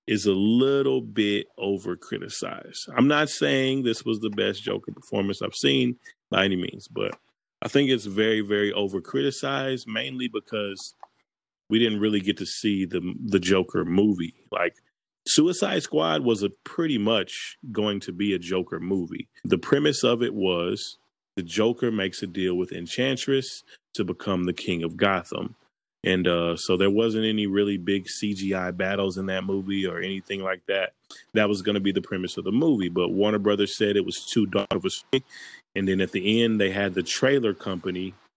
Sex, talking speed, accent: male, 180 wpm, American